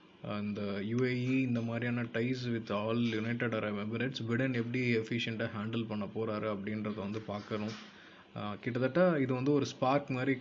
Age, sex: 20-39, male